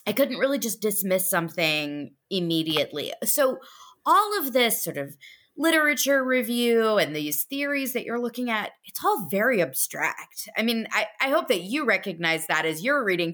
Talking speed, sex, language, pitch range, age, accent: 170 wpm, female, English, 180-255 Hz, 20-39, American